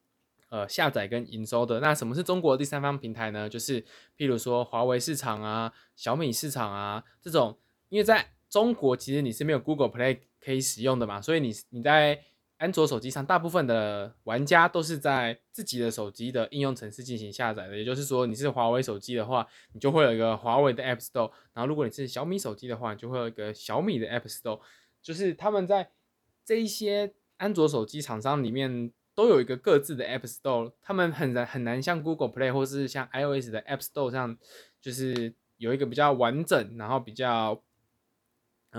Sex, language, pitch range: male, Chinese, 115-150 Hz